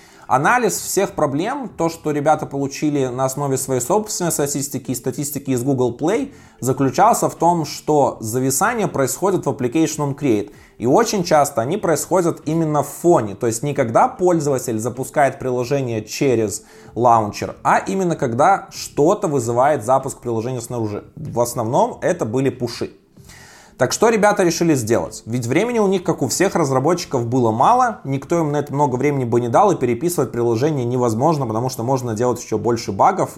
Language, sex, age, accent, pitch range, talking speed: Russian, male, 20-39, native, 125-165 Hz, 165 wpm